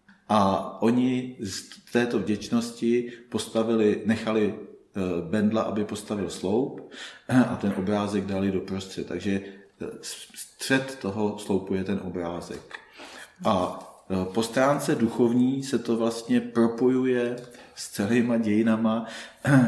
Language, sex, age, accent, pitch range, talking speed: Czech, male, 40-59, native, 100-120 Hz, 105 wpm